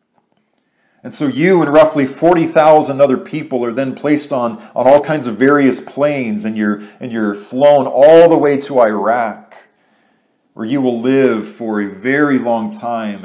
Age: 40-59